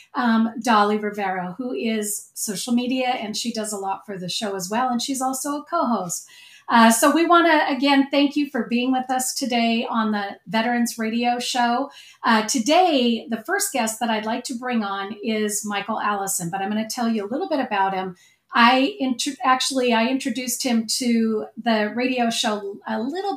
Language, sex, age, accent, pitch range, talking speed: English, female, 40-59, American, 210-255 Hz, 195 wpm